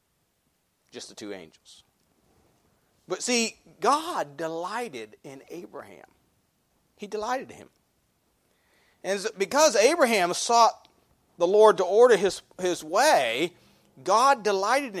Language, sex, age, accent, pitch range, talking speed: English, male, 40-59, American, 160-220 Hz, 105 wpm